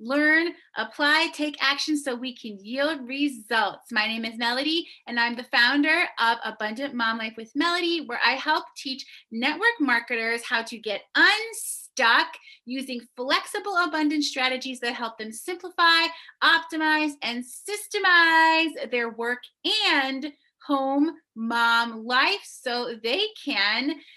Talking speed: 130 wpm